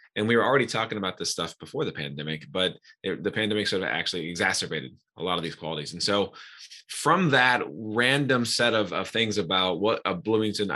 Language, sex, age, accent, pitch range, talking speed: English, male, 20-39, American, 90-110 Hz, 200 wpm